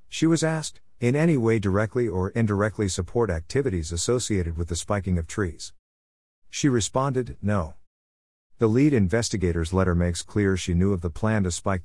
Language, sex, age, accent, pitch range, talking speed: English, male, 50-69, American, 85-115 Hz, 165 wpm